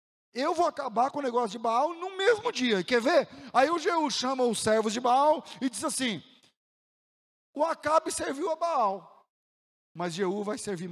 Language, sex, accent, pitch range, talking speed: Portuguese, male, Brazilian, 225-320 Hz, 180 wpm